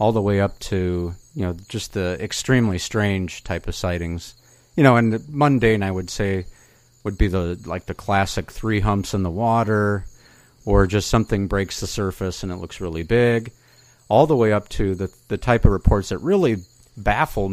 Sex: male